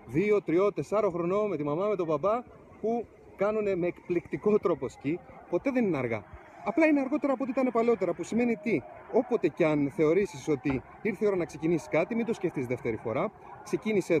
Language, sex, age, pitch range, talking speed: Greek, male, 30-49, 165-235 Hz, 200 wpm